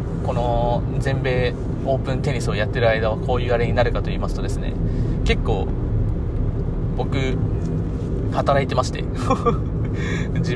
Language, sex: Japanese, male